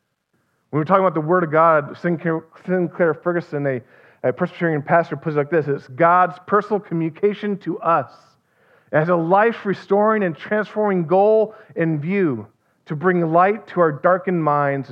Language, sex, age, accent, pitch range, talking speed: English, male, 40-59, American, 130-180 Hz, 155 wpm